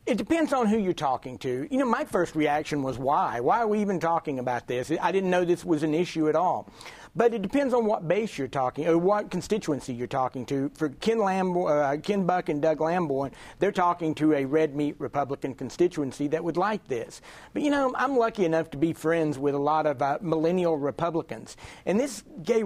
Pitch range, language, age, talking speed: 145-185 Hz, English, 50-69, 220 wpm